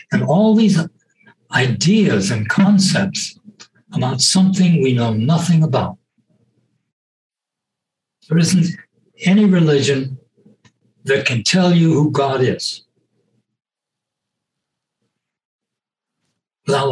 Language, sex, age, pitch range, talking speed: English, male, 60-79, 125-180 Hz, 85 wpm